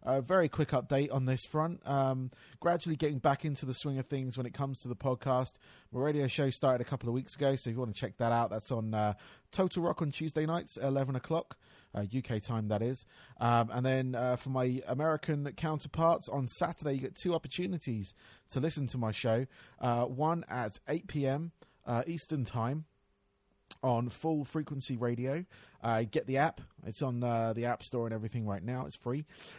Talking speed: 200 wpm